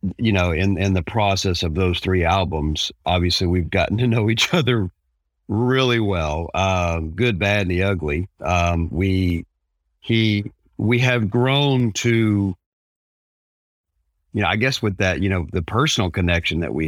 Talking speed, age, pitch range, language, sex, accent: 160 wpm, 50-69, 80-105 Hz, English, male, American